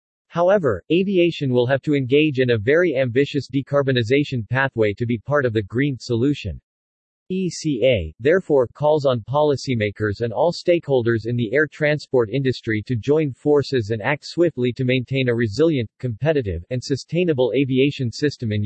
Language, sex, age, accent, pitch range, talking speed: English, male, 40-59, American, 120-150 Hz, 155 wpm